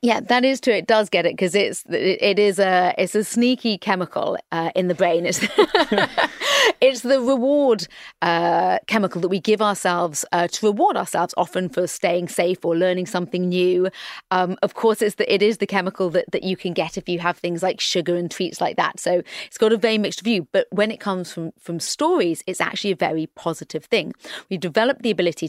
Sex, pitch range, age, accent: female, 175-205 Hz, 30-49, British